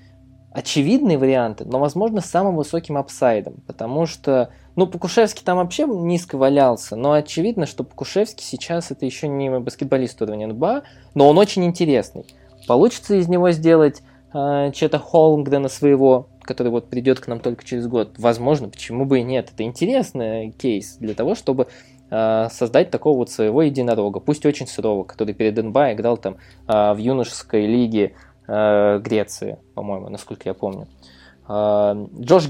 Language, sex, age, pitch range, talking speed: Russian, male, 20-39, 115-160 Hz, 150 wpm